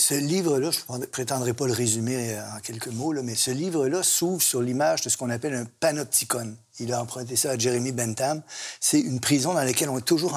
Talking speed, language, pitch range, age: 225 wpm, French, 120-150 Hz, 50-69